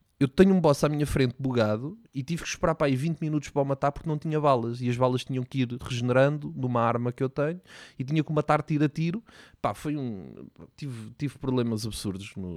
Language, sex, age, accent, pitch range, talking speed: Portuguese, male, 20-39, Portuguese, 120-145 Hz, 235 wpm